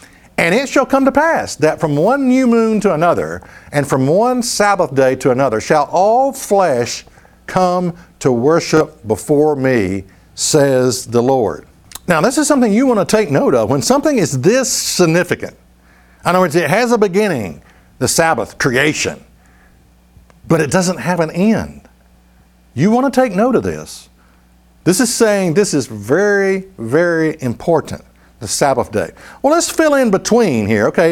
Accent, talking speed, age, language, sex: American, 170 wpm, 60-79, English, male